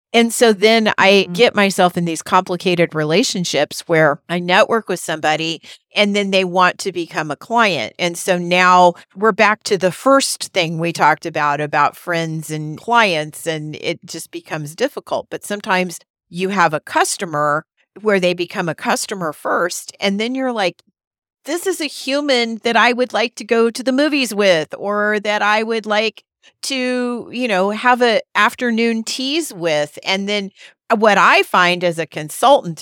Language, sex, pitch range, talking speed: English, female, 165-215 Hz, 175 wpm